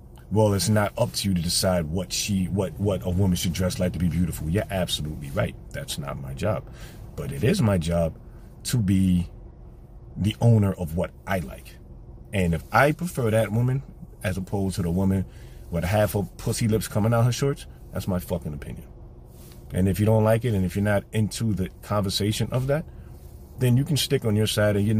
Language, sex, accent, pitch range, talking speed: English, male, American, 90-110 Hz, 210 wpm